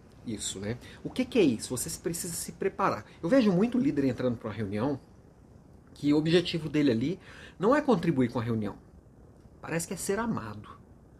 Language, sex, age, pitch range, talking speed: Portuguese, male, 40-59, 120-165 Hz, 190 wpm